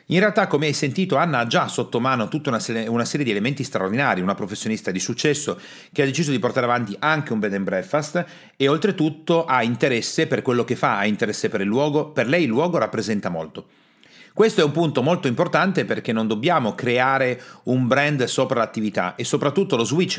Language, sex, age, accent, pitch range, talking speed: Italian, male, 40-59, native, 115-150 Hz, 200 wpm